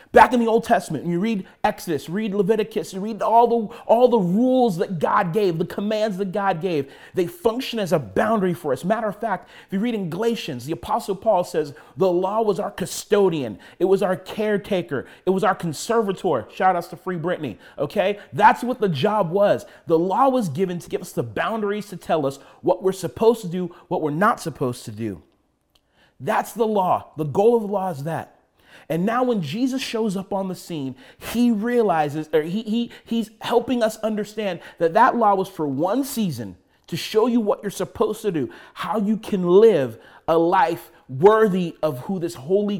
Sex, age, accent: male, 30-49, American